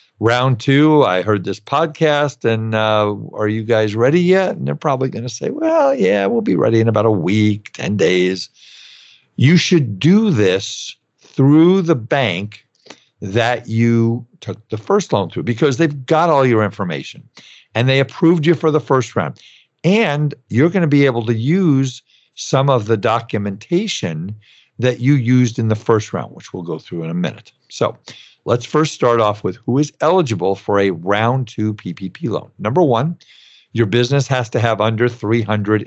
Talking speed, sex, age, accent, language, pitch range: 180 wpm, male, 50-69, American, English, 100-135 Hz